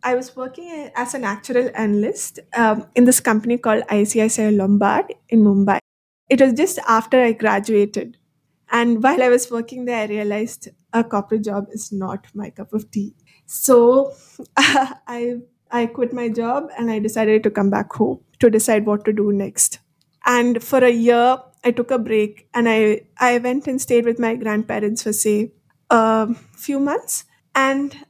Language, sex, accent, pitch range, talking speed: English, female, Indian, 215-260 Hz, 175 wpm